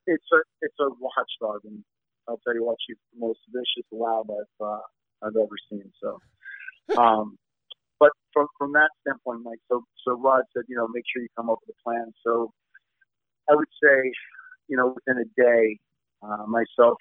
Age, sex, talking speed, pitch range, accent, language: 50-69, male, 185 wpm, 110-125 Hz, American, English